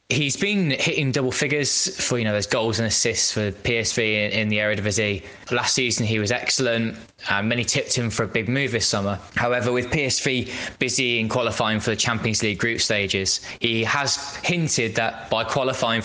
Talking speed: 190 wpm